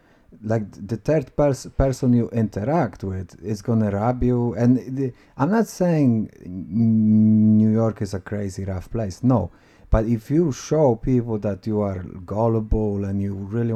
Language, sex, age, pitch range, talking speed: English, male, 30-49, 105-150 Hz, 155 wpm